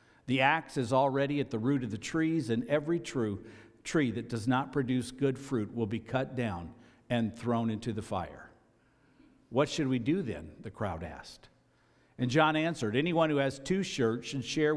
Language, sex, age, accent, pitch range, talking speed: English, male, 50-69, American, 115-140 Hz, 190 wpm